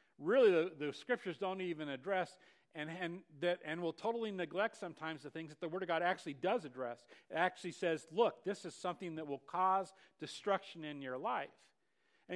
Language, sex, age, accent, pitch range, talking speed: English, male, 50-69, American, 145-195 Hz, 195 wpm